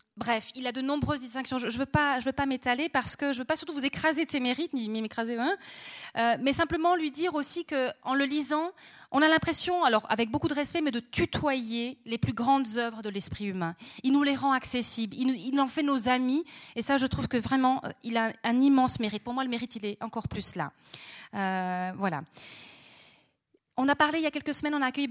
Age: 30-49